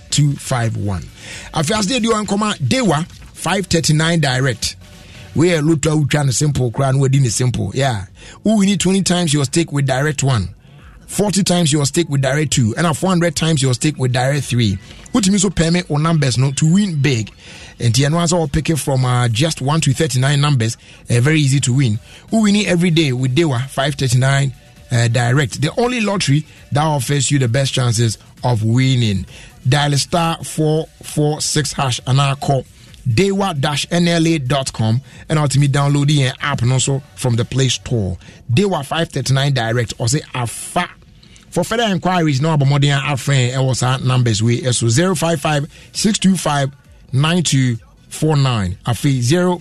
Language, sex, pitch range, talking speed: English, male, 125-160 Hz, 185 wpm